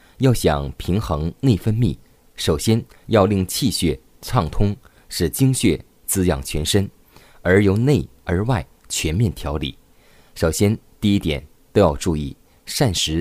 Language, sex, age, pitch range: Chinese, male, 20-39, 80-110 Hz